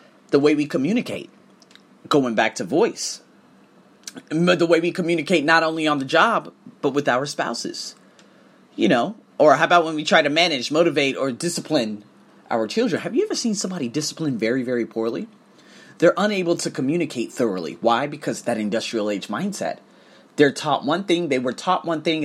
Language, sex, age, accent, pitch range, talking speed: English, male, 30-49, American, 125-170 Hz, 175 wpm